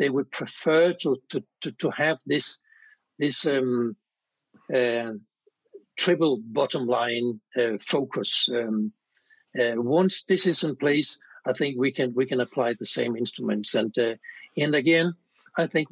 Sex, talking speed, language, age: male, 150 wpm, English, 60-79